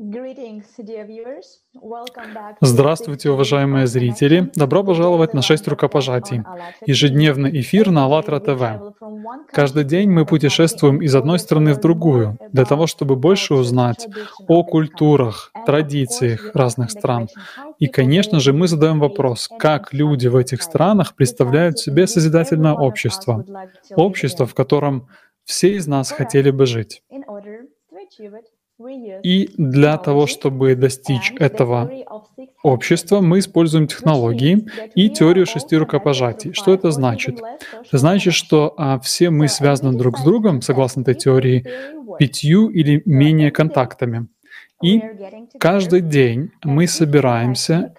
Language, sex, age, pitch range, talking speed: Russian, male, 20-39, 135-180 Hz, 120 wpm